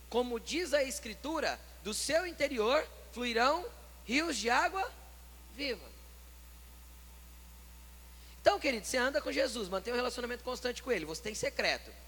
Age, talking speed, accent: 20-39, 135 wpm, Brazilian